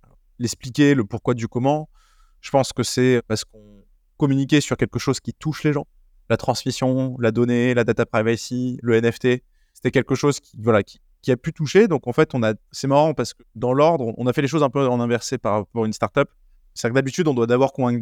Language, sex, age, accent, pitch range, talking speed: French, male, 20-39, French, 115-140 Hz, 220 wpm